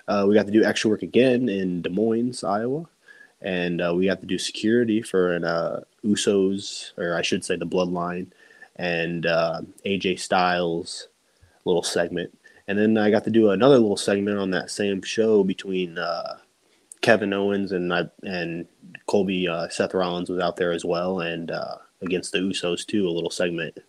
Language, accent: English, American